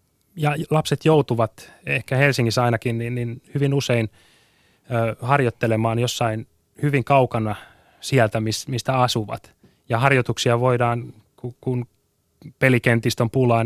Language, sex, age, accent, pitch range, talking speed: Finnish, male, 20-39, native, 115-135 Hz, 95 wpm